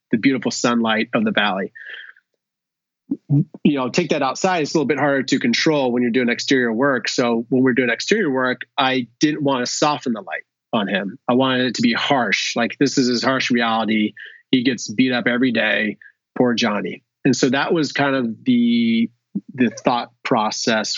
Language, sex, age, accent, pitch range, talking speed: English, male, 30-49, American, 120-145 Hz, 195 wpm